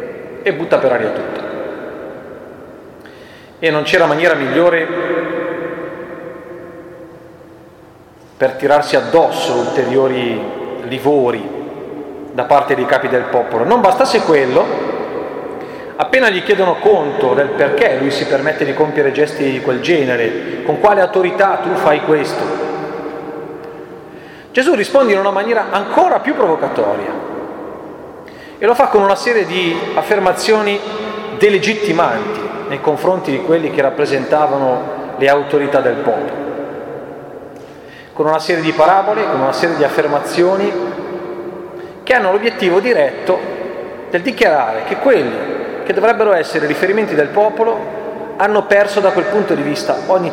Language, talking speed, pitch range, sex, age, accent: Italian, 125 wpm, 150-205 Hz, male, 40-59, native